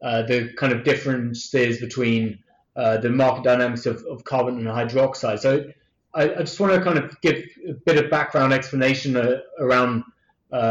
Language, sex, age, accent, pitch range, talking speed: English, male, 20-39, British, 120-140 Hz, 180 wpm